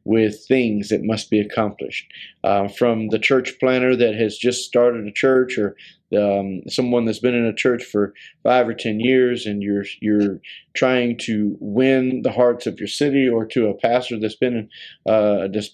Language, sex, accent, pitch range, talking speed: English, male, American, 110-125 Hz, 185 wpm